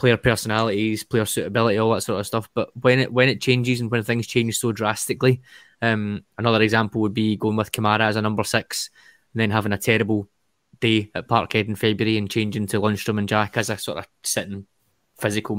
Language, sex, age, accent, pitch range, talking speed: English, male, 20-39, British, 105-120 Hz, 210 wpm